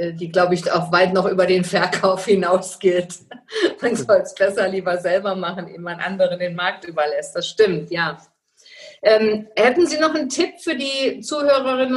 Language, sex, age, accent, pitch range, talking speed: German, female, 50-69, German, 180-220 Hz, 175 wpm